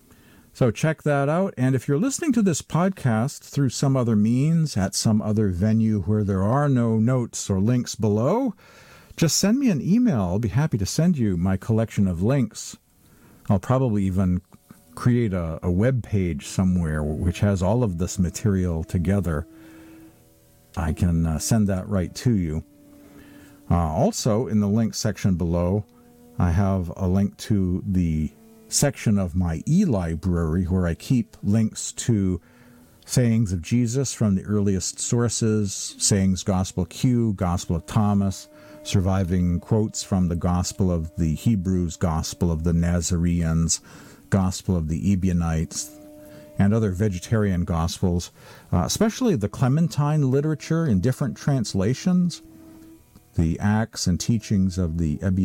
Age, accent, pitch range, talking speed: 50-69, American, 90-125 Hz, 145 wpm